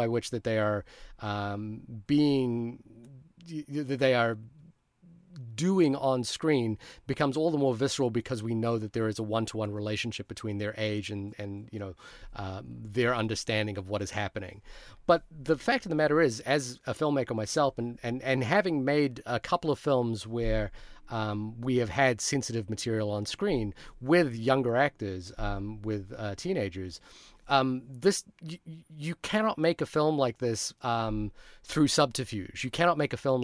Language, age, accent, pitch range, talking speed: English, 30-49, American, 105-135 Hz, 170 wpm